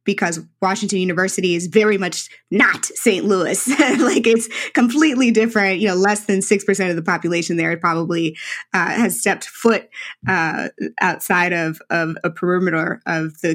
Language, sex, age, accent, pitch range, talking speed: English, female, 20-39, American, 170-210 Hz, 155 wpm